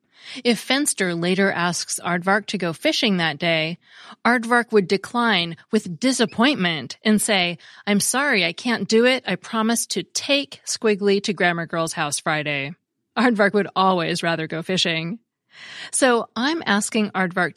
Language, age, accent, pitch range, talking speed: English, 30-49, American, 175-230 Hz, 145 wpm